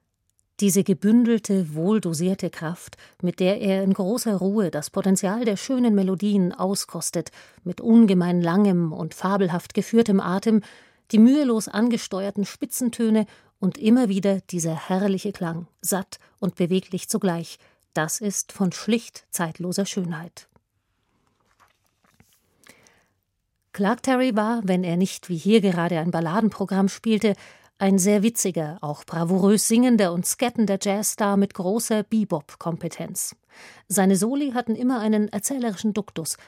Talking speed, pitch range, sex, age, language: 120 wpm, 175-215 Hz, female, 40-59, German